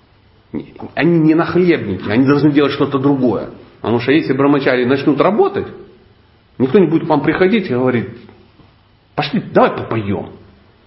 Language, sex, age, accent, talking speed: Russian, male, 40-59, native, 145 wpm